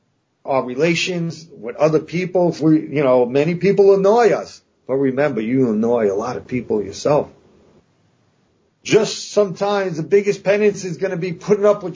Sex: male